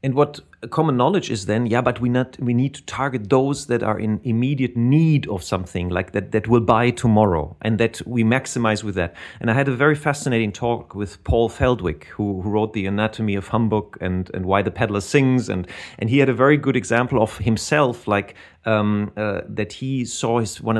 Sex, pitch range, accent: male, 100-130 Hz, German